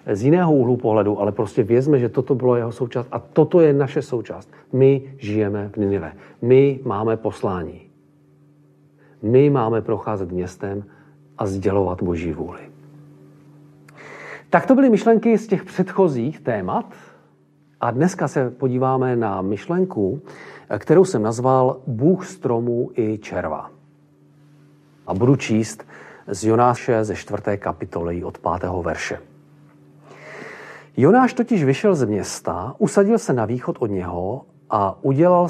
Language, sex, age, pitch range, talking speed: Czech, male, 40-59, 100-145 Hz, 130 wpm